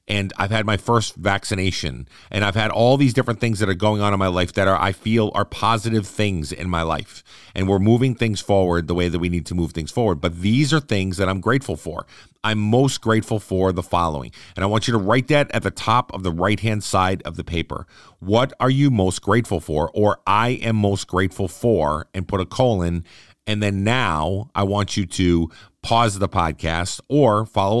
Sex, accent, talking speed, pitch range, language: male, American, 225 wpm, 90-115 Hz, English